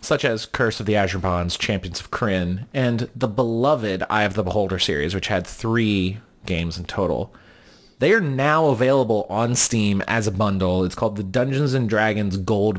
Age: 30-49